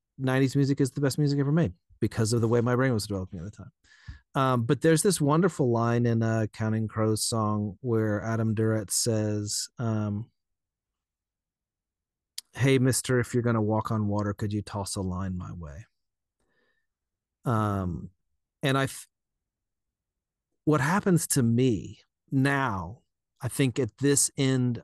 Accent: American